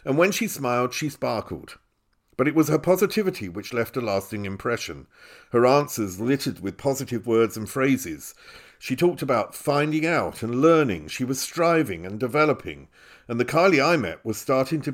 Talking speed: 175 wpm